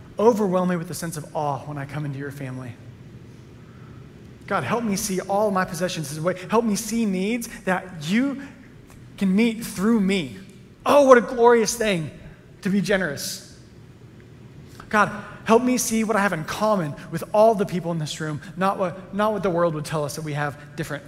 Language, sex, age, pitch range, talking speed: English, male, 30-49, 135-185 Hz, 200 wpm